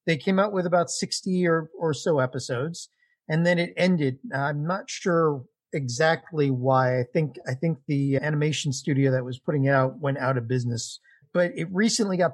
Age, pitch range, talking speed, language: 40-59, 135-165 Hz, 190 wpm, English